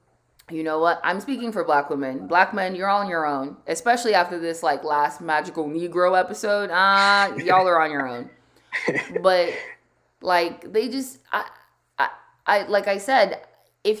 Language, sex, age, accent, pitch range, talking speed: English, female, 20-39, American, 175-260 Hz, 165 wpm